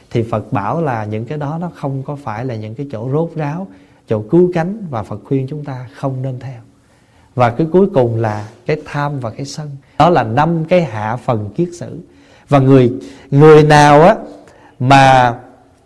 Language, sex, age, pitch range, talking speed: Vietnamese, male, 20-39, 115-150 Hz, 195 wpm